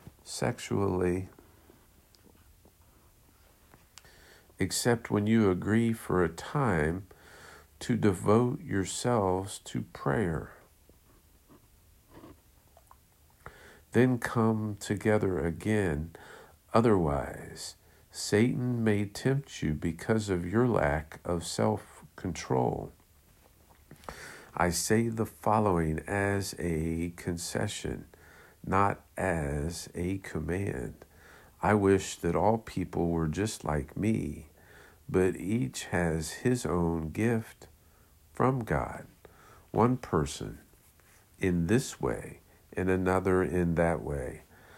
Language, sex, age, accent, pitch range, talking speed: English, male, 50-69, American, 85-110 Hz, 90 wpm